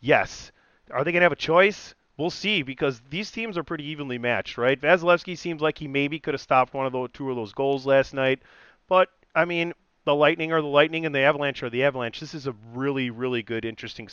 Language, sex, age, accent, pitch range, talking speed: English, male, 40-59, American, 125-160 Hz, 240 wpm